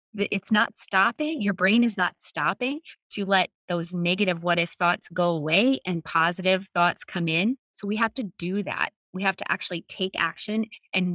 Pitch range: 170-215 Hz